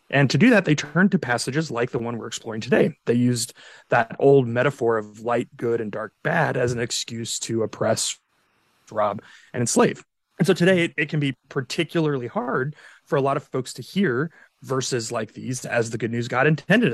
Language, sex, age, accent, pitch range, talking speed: English, male, 30-49, American, 120-155 Hz, 200 wpm